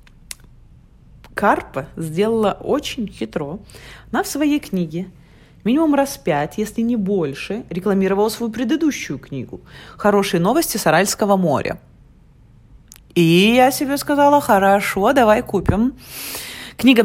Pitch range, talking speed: 165-225 Hz, 110 wpm